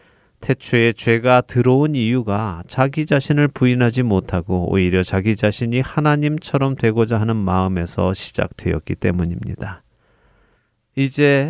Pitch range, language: 95-125 Hz, Korean